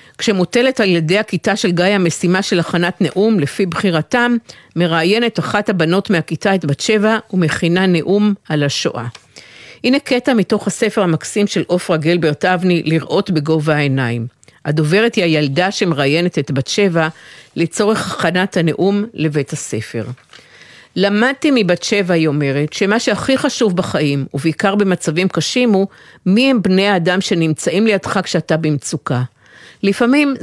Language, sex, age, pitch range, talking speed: Hebrew, female, 50-69, 155-205 Hz, 135 wpm